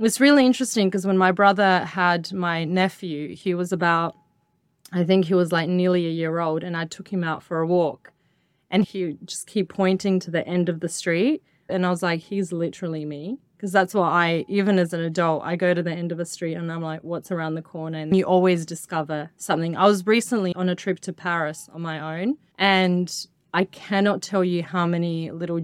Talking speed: 225 wpm